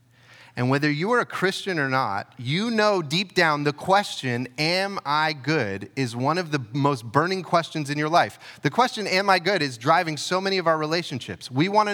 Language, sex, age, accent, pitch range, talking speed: English, male, 30-49, American, 125-185 Hz, 205 wpm